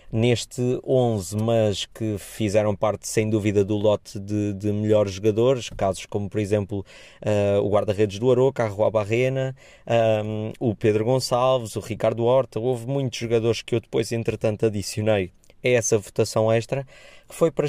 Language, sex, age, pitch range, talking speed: Portuguese, male, 20-39, 105-115 Hz, 155 wpm